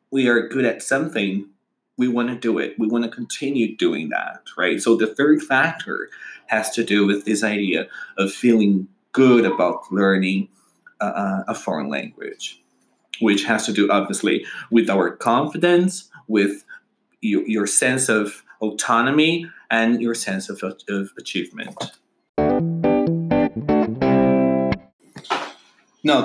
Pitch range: 100-155 Hz